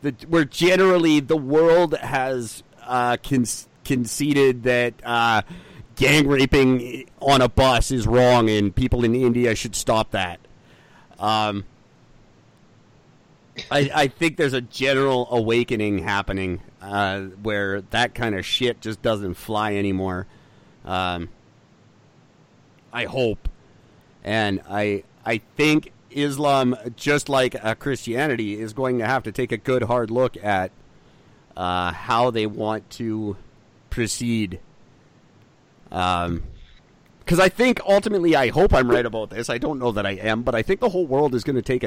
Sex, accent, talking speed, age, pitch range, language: male, American, 140 wpm, 40-59, 110-135 Hz, English